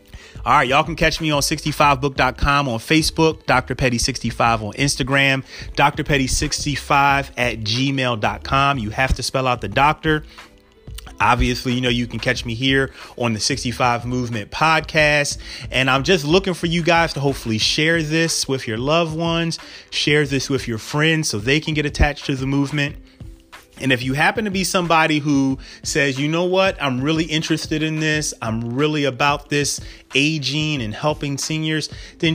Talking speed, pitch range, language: 175 wpm, 120-155 Hz, English